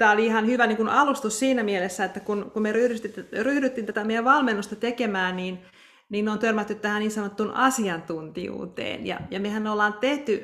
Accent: native